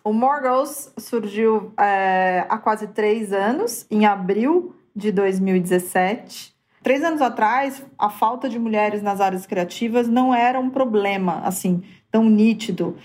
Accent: Brazilian